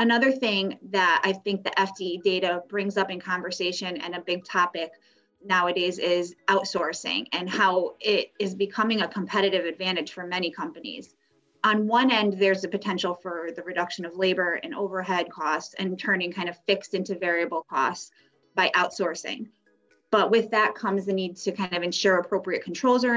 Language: English